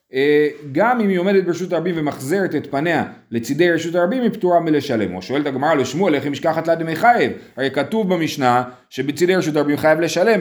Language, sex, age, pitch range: Hebrew, male, 30-49, 135-185 Hz